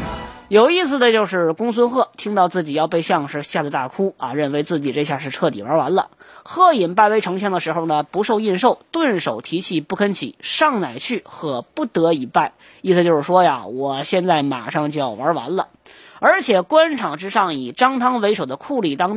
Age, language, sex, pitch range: 20-39, Chinese, female, 155-245 Hz